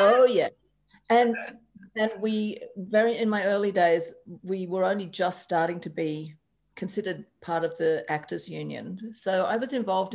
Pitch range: 170-220 Hz